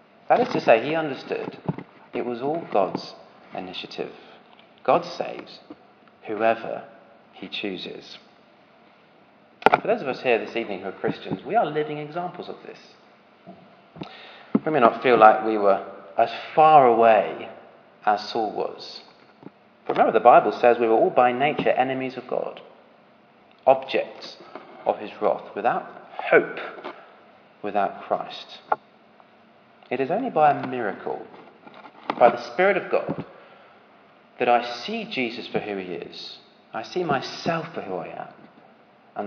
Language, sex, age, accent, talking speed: English, male, 40-59, British, 140 wpm